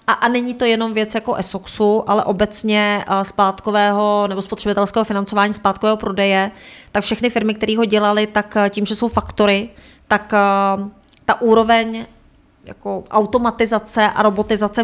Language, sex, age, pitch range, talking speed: Czech, female, 30-49, 190-210 Hz, 135 wpm